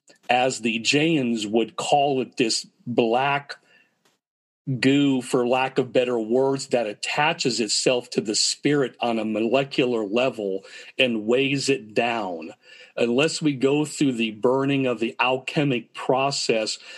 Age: 40-59